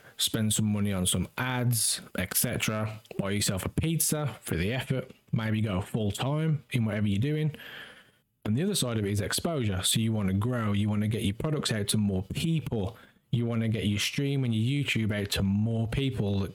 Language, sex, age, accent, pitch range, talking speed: English, male, 20-39, British, 105-130 Hz, 215 wpm